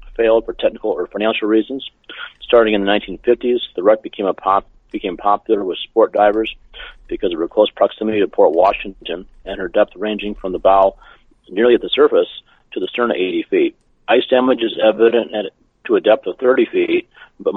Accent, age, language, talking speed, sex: American, 40-59, English, 195 wpm, male